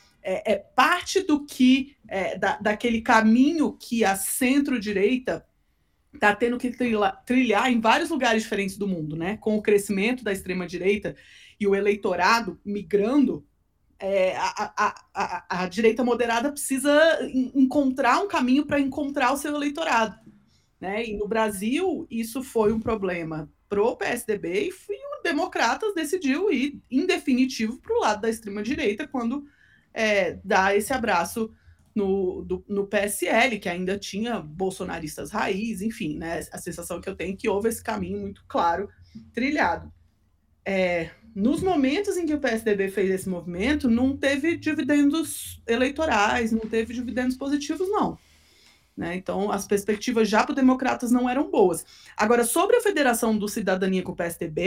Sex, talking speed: female, 145 wpm